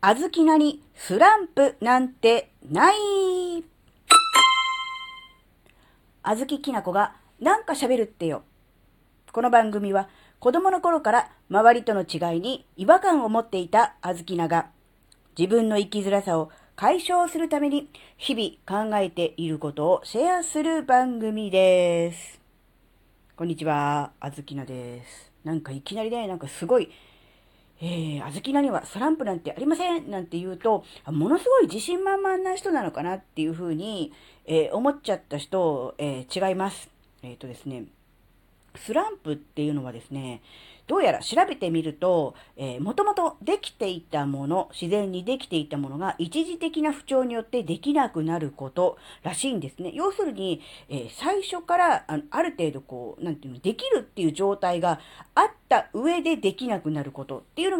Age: 40-59